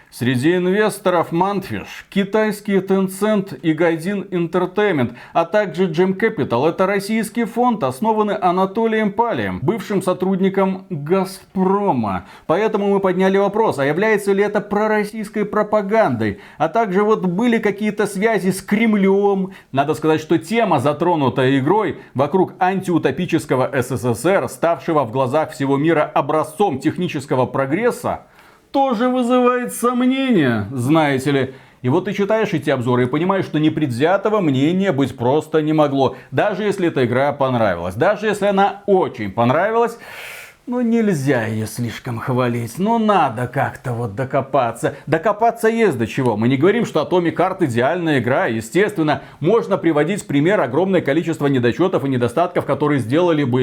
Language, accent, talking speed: Russian, native, 135 wpm